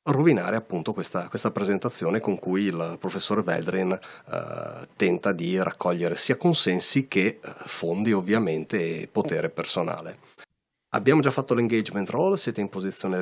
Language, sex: Italian, male